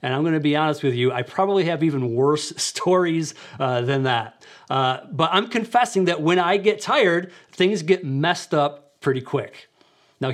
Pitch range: 135-175 Hz